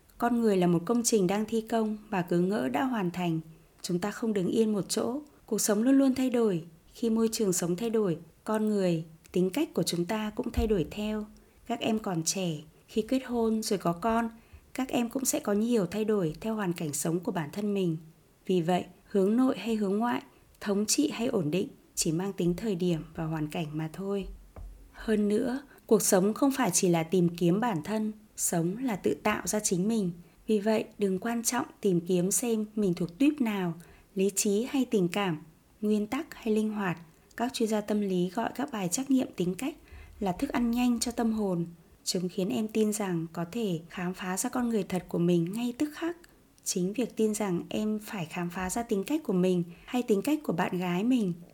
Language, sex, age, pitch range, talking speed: Vietnamese, female, 20-39, 180-230 Hz, 220 wpm